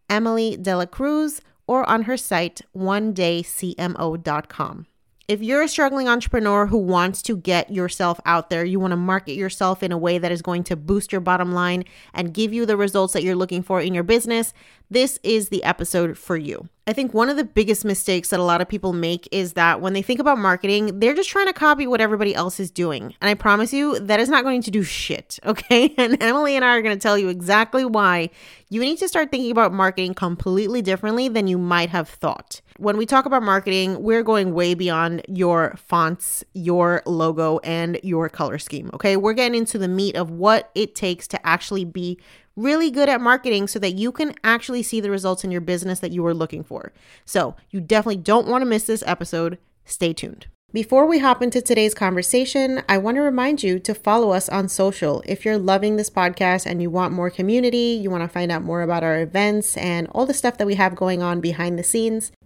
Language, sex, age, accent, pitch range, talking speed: English, female, 30-49, American, 180-225 Hz, 220 wpm